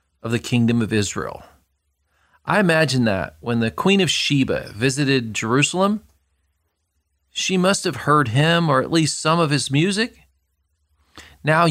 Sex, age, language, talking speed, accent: male, 40-59, English, 145 wpm, American